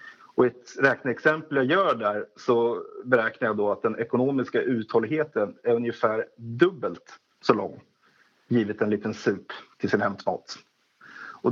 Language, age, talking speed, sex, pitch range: Swedish, 30-49, 140 wpm, male, 125-180 Hz